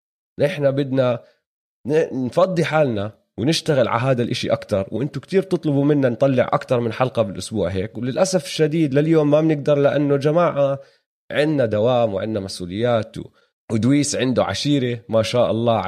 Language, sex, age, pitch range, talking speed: Arabic, male, 30-49, 105-140 Hz, 135 wpm